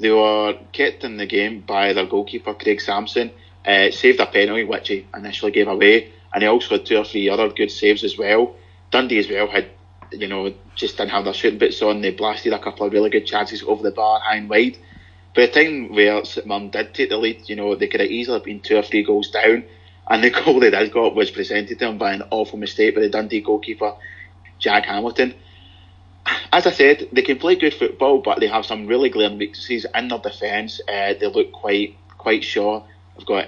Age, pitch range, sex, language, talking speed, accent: 30-49, 95-125 Hz, male, English, 225 wpm, British